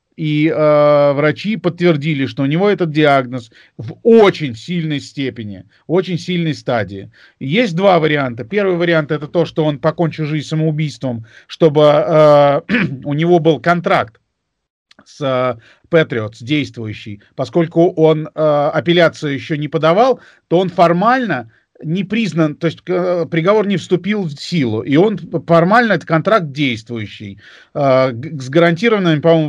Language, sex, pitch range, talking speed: Russian, male, 135-175 Hz, 140 wpm